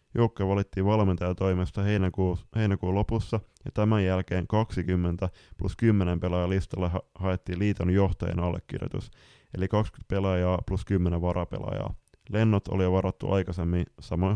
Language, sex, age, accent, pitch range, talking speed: Finnish, male, 20-39, native, 95-100 Hz, 115 wpm